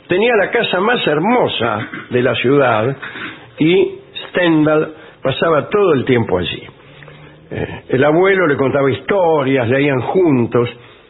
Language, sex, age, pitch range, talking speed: English, male, 60-79, 130-195 Hz, 125 wpm